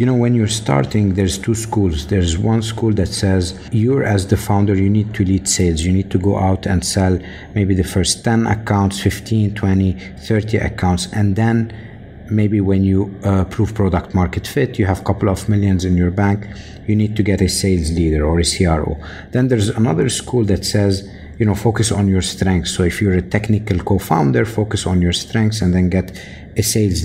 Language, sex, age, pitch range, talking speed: English, male, 50-69, 95-110 Hz, 205 wpm